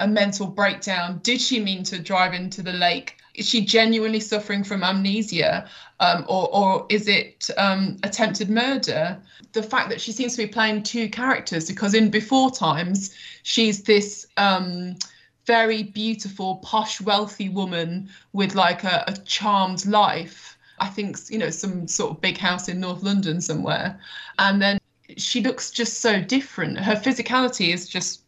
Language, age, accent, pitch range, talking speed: English, 20-39, British, 190-225 Hz, 165 wpm